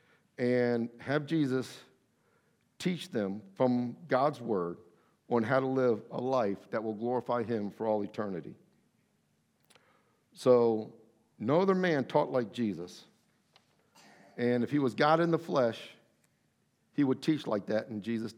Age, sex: 50-69, male